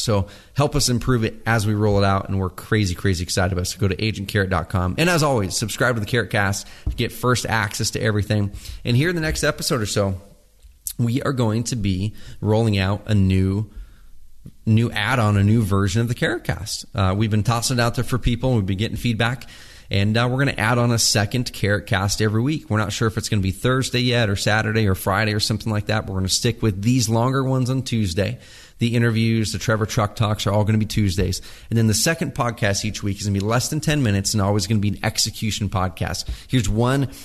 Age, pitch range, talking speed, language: 30-49, 100-120 Hz, 240 wpm, English